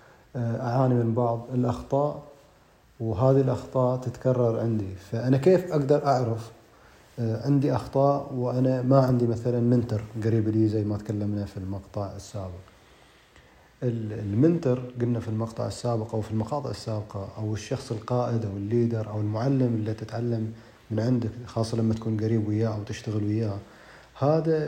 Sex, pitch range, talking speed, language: male, 105-125 Hz, 135 wpm, Arabic